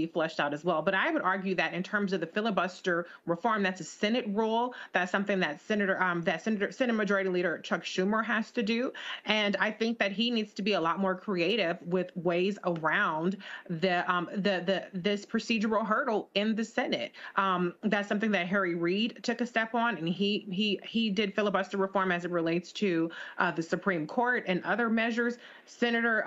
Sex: female